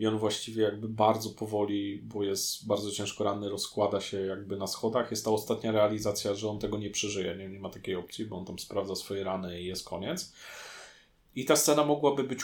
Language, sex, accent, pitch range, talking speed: Polish, male, native, 105-125 Hz, 205 wpm